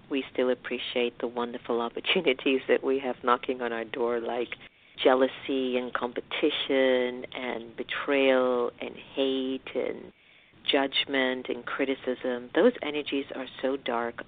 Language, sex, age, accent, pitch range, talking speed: English, female, 50-69, American, 125-145 Hz, 125 wpm